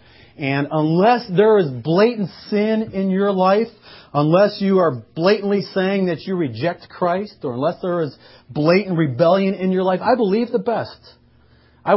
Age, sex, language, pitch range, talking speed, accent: 40-59, male, English, 120-175 Hz, 160 wpm, American